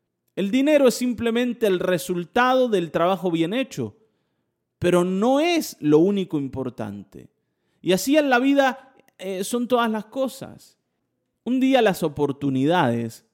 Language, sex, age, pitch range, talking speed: Spanish, male, 30-49, 130-200 Hz, 135 wpm